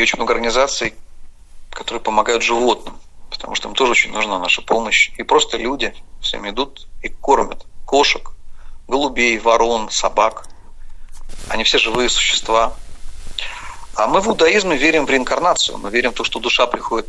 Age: 40-59